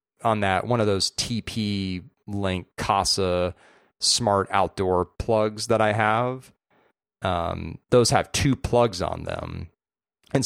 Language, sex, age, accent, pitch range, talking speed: English, male, 30-49, American, 90-110 Hz, 125 wpm